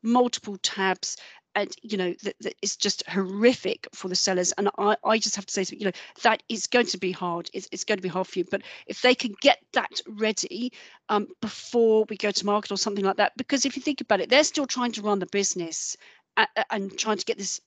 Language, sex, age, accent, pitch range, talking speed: English, female, 40-59, British, 190-225 Hz, 240 wpm